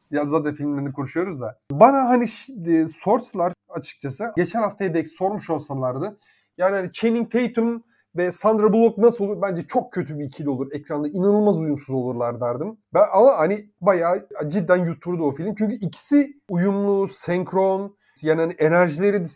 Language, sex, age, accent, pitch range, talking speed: Turkish, male, 30-49, native, 165-210 Hz, 160 wpm